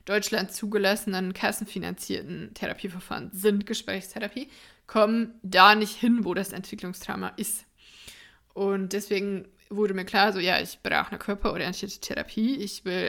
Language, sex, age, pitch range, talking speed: German, female, 20-39, 200-235 Hz, 130 wpm